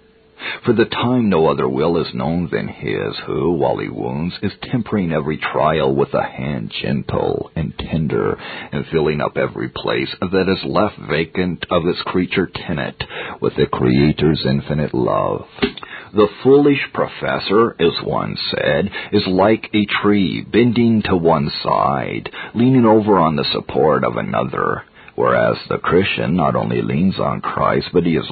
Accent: American